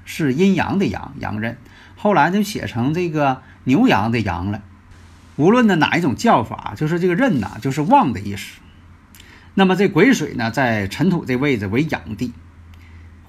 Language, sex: Chinese, male